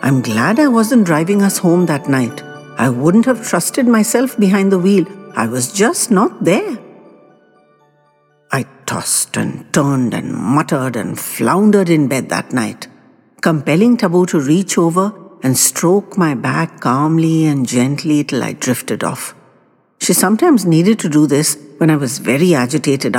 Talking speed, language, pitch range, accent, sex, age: 160 wpm, English, 145-230 Hz, Indian, female, 60-79